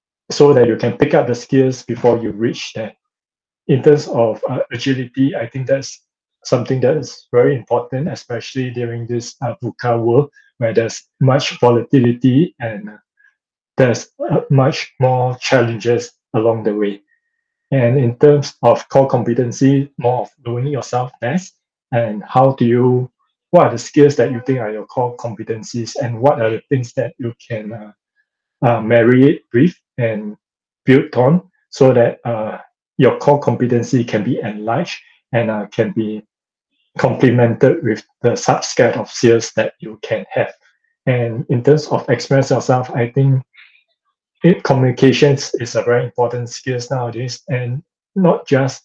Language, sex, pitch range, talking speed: English, male, 120-140 Hz, 155 wpm